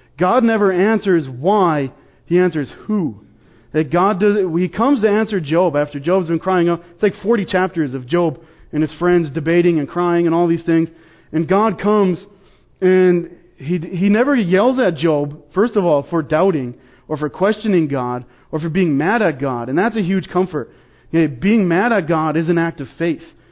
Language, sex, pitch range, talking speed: English, male, 155-190 Hz, 195 wpm